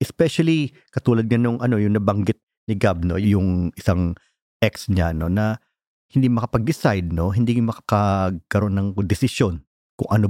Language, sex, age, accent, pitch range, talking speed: Filipino, male, 50-69, native, 95-125 Hz, 150 wpm